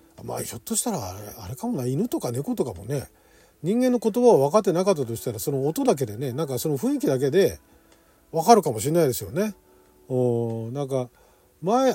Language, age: Japanese, 40-59